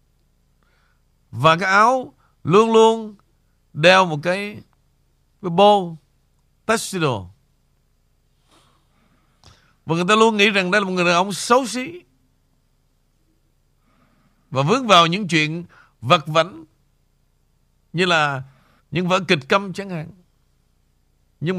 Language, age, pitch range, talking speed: Vietnamese, 60-79, 145-200 Hz, 115 wpm